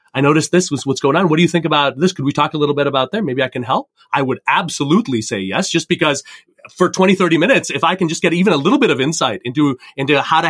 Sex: male